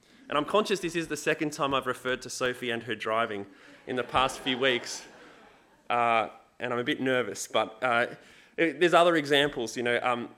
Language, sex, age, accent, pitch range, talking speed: English, male, 20-39, Australian, 130-175 Hz, 195 wpm